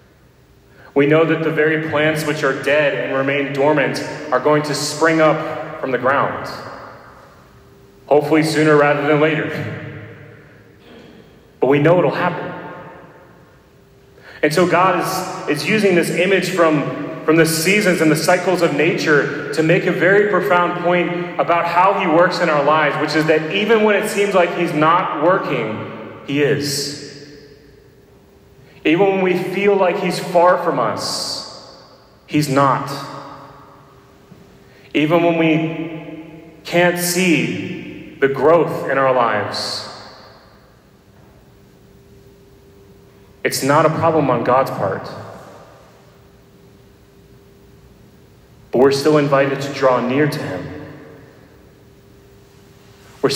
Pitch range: 135-170 Hz